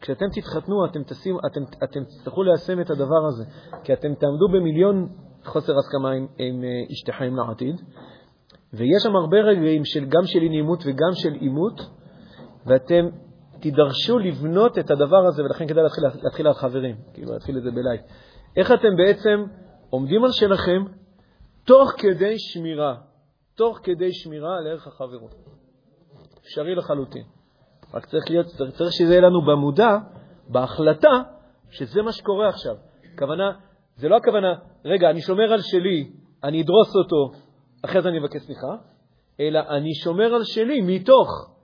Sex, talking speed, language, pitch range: male, 140 wpm, Hebrew, 140-190 Hz